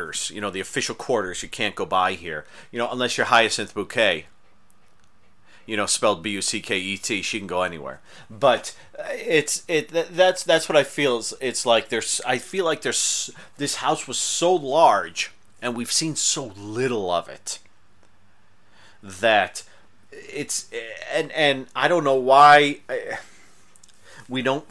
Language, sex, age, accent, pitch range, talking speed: English, male, 30-49, American, 115-155 Hz, 150 wpm